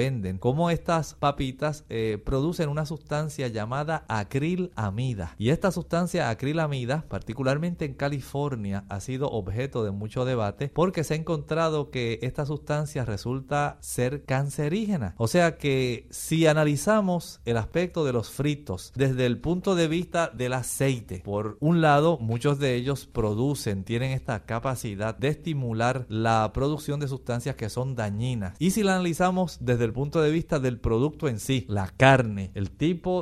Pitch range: 115-155 Hz